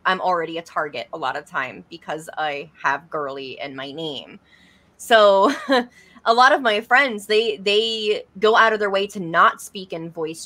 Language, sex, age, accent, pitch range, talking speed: English, female, 20-39, American, 165-200 Hz, 190 wpm